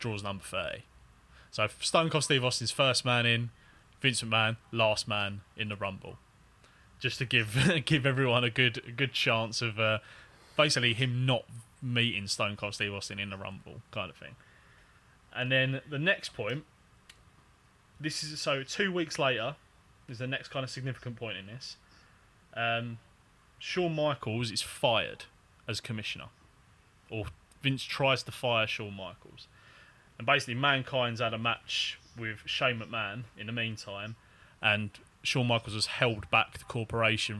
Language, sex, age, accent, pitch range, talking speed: English, male, 20-39, British, 105-125 Hz, 155 wpm